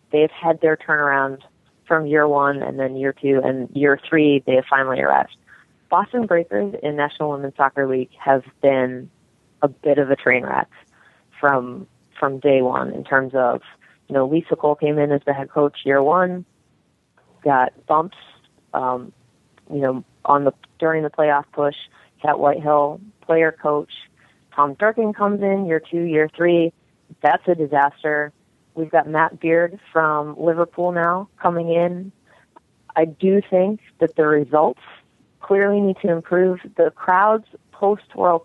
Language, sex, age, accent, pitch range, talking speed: English, female, 30-49, American, 145-175 Hz, 155 wpm